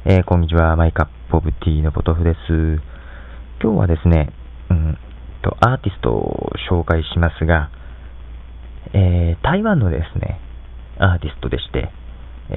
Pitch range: 70-95 Hz